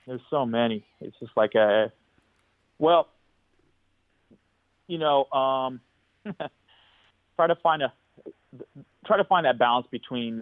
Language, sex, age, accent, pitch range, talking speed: English, male, 30-49, American, 110-150 Hz, 120 wpm